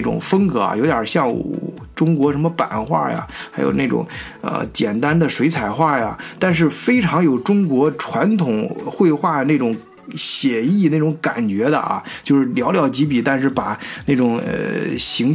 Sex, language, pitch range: male, Chinese, 125-175 Hz